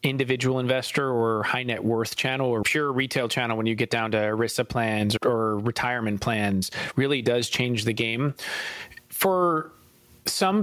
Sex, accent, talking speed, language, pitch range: male, American, 160 wpm, English, 115-140 Hz